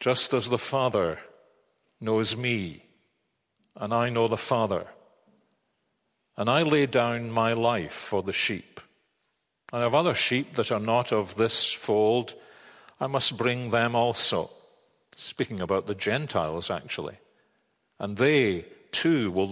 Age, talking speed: 50-69, 135 wpm